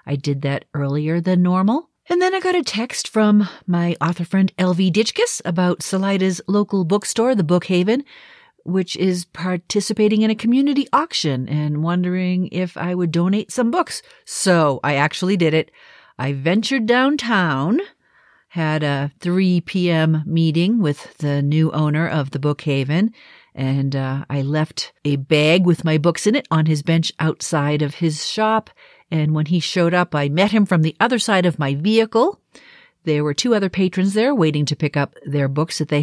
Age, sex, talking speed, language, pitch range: 50-69, female, 180 wpm, English, 150-210 Hz